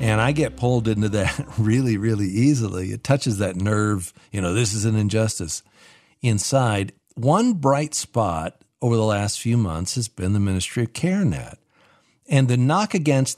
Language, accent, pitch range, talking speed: English, American, 100-130 Hz, 175 wpm